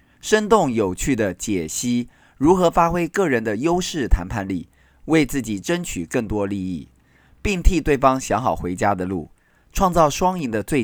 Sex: male